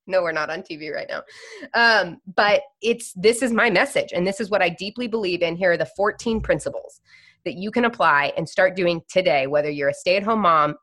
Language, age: English, 20-39